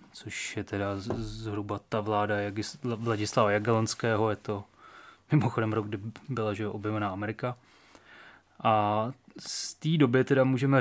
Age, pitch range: 20-39, 105-120 Hz